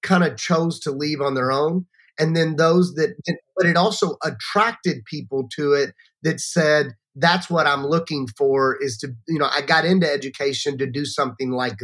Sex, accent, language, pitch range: male, American, English, 140-175 Hz